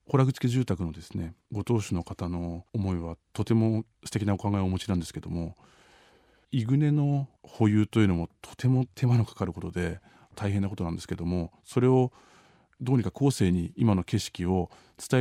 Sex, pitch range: male, 90-115 Hz